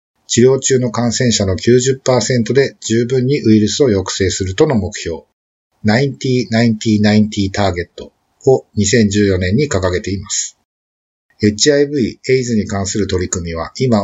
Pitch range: 95-125 Hz